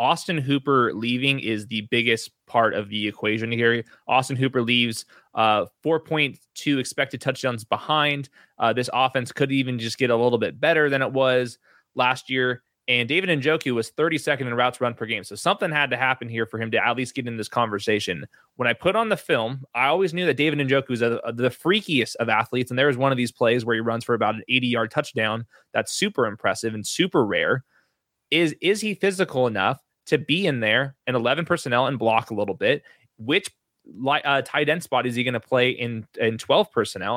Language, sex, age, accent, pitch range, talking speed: English, male, 20-39, American, 115-145 Hz, 210 wpm